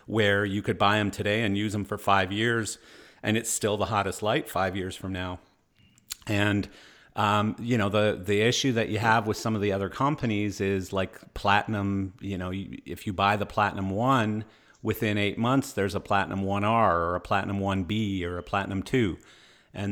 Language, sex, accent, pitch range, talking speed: English, male, American, 95-110 Hz, 200 wpm